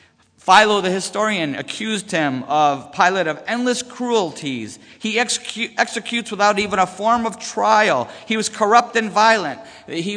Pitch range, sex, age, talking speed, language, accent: 160-215 Hz, male, 50-69, 140 wpm, English, American